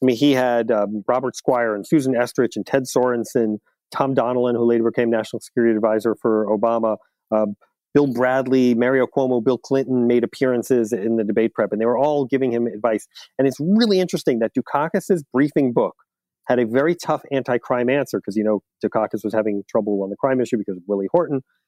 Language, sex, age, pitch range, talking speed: English, male, 30-49, 115-140 Hz, 200 wpm